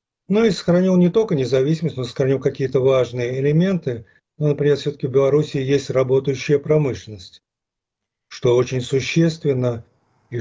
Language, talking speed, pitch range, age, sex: Russian, 140 wpm, 125-160 Hz, 40-59, male